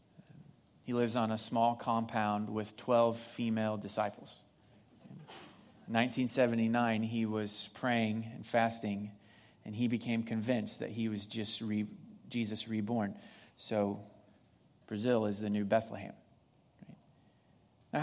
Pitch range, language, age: 110-125 Hz, English, 30-49